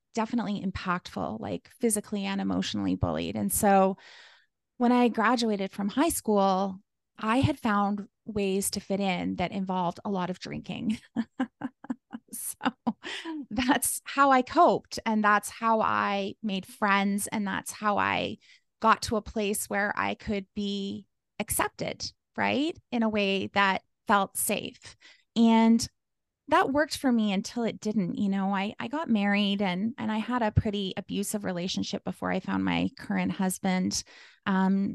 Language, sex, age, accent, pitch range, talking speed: English, female, 20-39, American, 195-235 Hz, 150 wpm